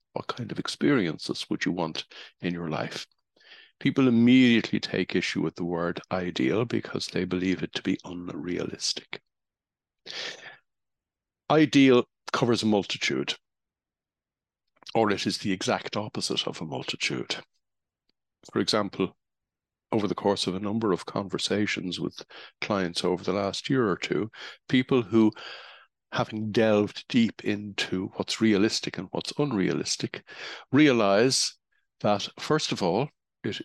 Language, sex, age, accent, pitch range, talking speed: English, male, 60-79, Irish, 90-115 Hz, 130 wpm